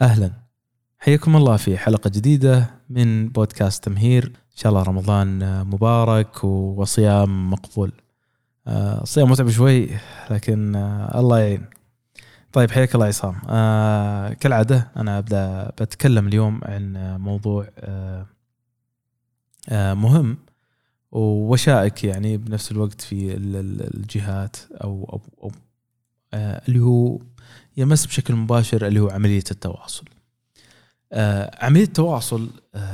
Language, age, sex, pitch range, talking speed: Arabic, 20-39, male, 105-125 Hz, 95 wpm